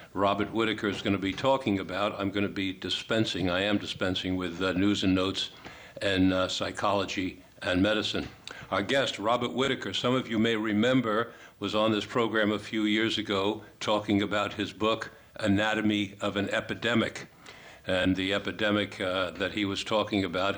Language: English